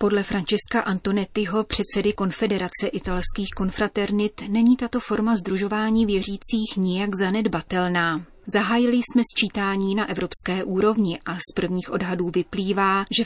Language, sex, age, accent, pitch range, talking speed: Czech, female, 30-49, native, 180-215 Hz, 120 wpm